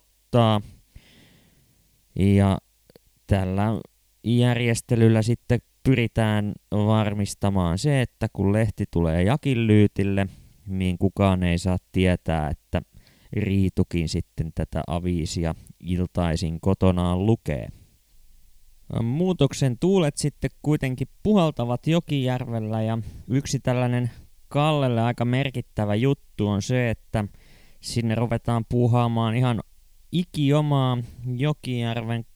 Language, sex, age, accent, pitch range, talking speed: Finnish, male, 20-39, native, 100-130 Hz, 90 wpm